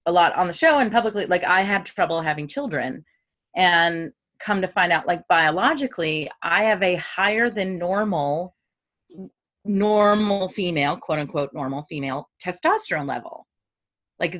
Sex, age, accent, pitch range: female, 30-49, American, 165-210 Hz